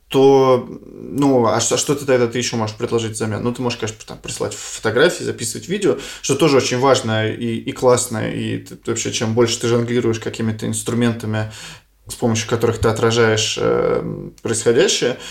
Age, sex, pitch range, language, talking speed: 20-39, male, 110-125 Hz, Russian, 180 wpm